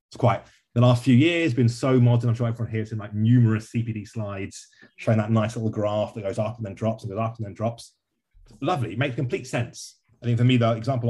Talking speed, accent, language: 260 wpm, British, English